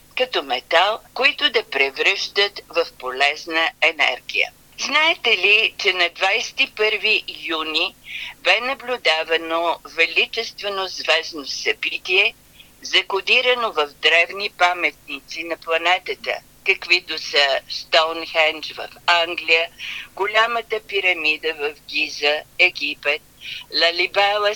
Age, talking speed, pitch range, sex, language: 50-69, 90 wpm, 150-210 Hz, female, Bulgarian